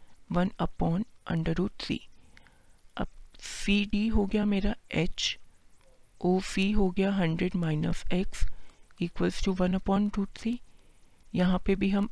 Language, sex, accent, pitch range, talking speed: Hindi, female, native, 170-200 Hz, 145 wpm